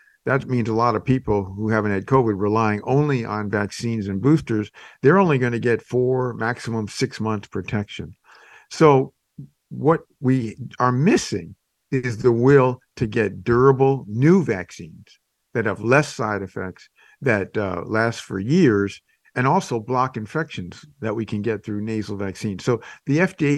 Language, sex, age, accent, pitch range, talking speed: English, male, 50-69, American, 105-130 Hz, 160 wpm